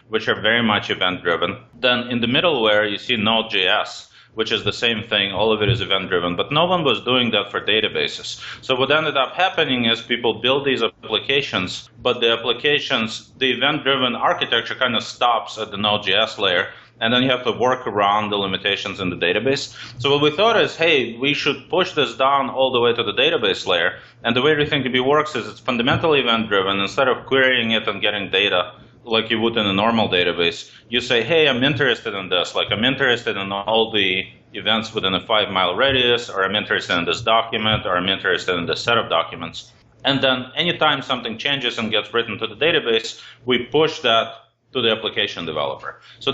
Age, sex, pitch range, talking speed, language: 30-49, male, 110-140 Hz, 205 wpm, English